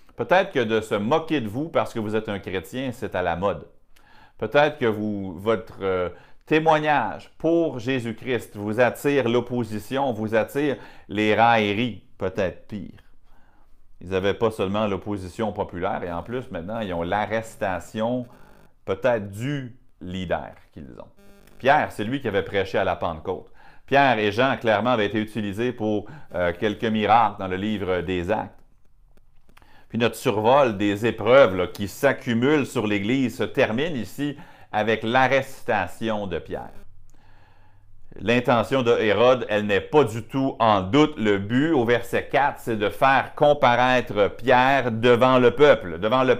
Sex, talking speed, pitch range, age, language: male, 155 wpm, 105-135 Hz, 40-59, French